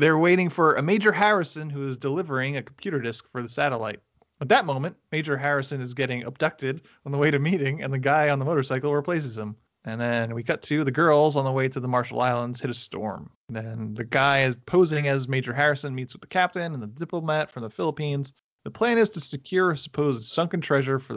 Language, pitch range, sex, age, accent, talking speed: English, 120-150 Hz, male, 30-49, American, 230 wpm